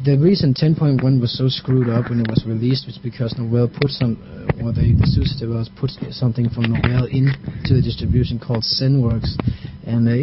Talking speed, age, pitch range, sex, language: 195 wpm, 30-49, 115-130 Hz, male, English